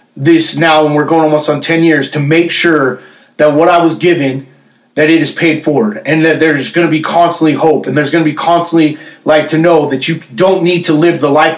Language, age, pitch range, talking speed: English, 30-49, 170-235 Hz, 245 wpm